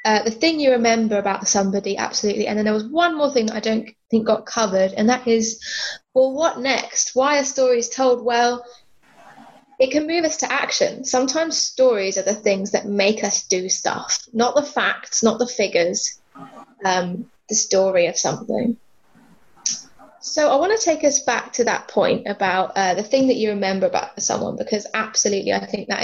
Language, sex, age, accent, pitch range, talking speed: English, female, 20-39, British, 215-280 Hz, 190 wpm